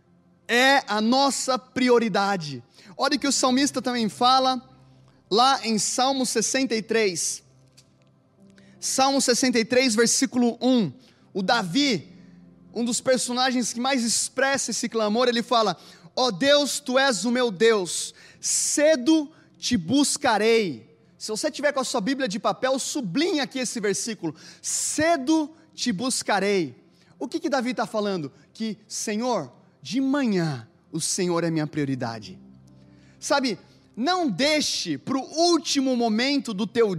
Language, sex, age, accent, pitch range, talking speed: Portuguese, male, 20-39, Brazilian, 195-270 Hz, 130 wpm